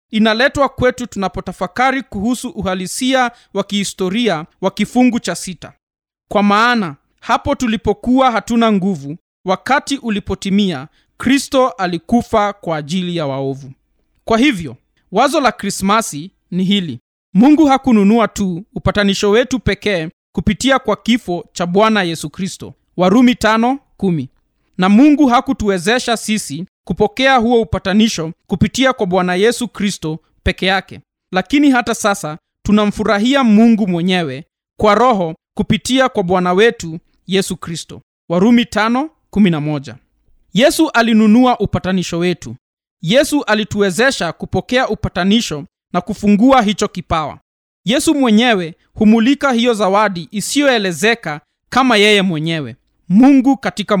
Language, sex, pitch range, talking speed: Swahili, male, 180-240 Hz, 110 wpm